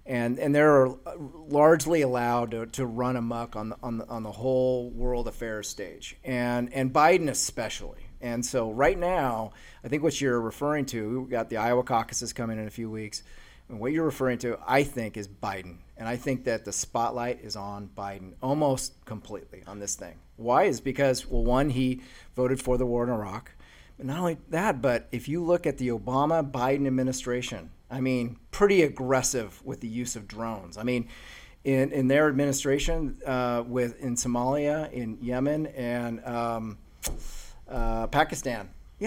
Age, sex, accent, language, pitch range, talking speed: 30-49, male, American, English, 115-140 Hz, 180 wpm